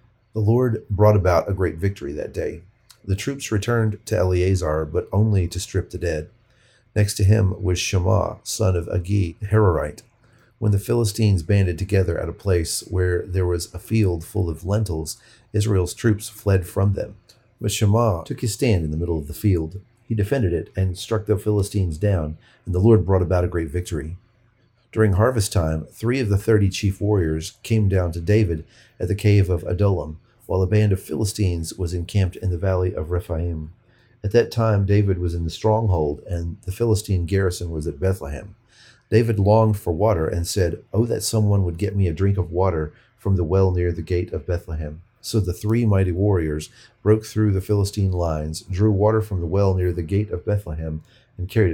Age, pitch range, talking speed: 40-59, 90-110 Hz, 195 wpm